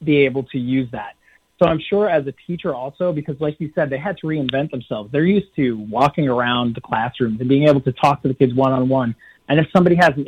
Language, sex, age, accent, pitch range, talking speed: English, male, 30-49, American, 125-160 Hz, 245 wpm